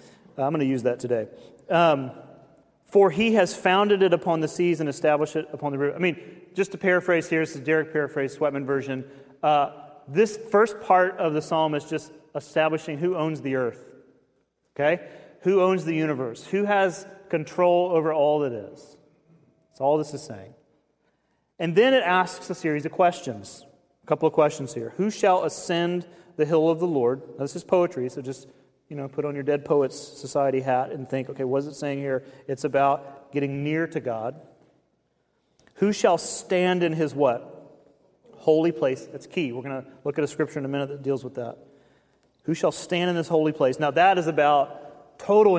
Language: English